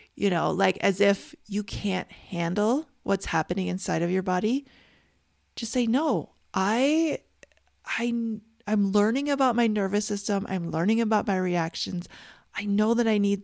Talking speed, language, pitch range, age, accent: 155 wpm, English, 180-230 Hz, 30-49, American